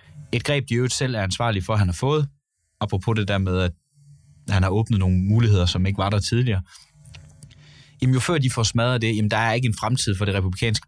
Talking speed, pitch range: 245 wpm, 90-120 Hz